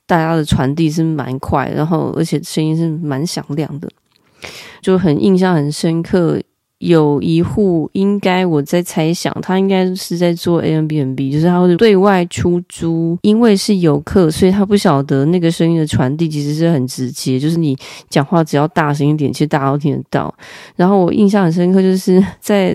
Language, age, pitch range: Chinese, 20-39, 155-185 Hz